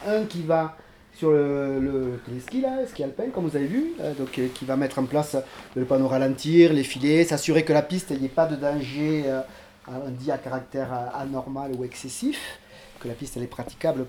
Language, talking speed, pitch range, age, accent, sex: French, 210 wpm, 125-160 Hz, 40-59, French, male